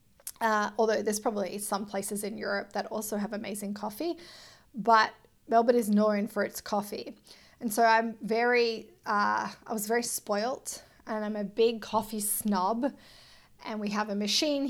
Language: English